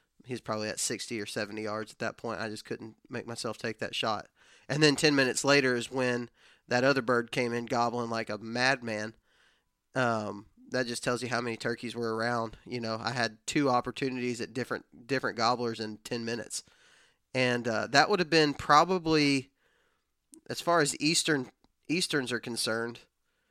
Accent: American